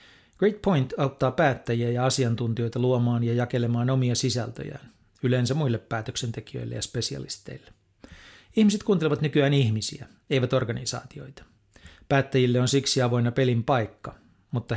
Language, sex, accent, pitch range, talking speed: Finnish, male, native, 115-135 Hz, 120 wpm